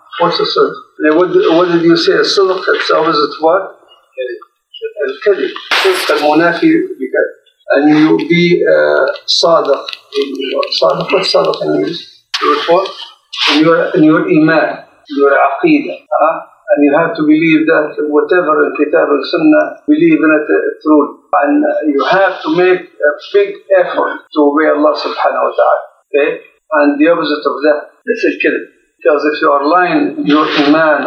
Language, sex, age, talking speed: English, male, 50-69, 150 wpm